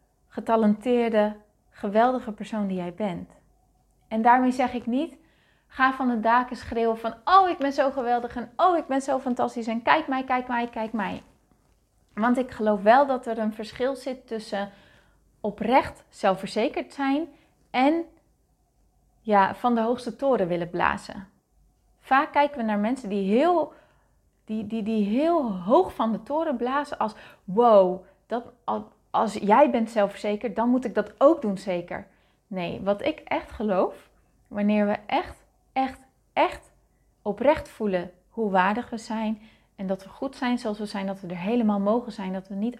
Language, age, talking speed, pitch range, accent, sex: Dutch, 30-49, 165 wpm, 210-260 Hz, Dutch, female